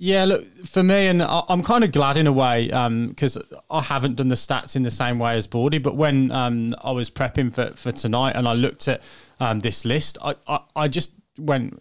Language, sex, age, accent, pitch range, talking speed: English, male, 20-39, British, 125-150 Hz, 235 wpm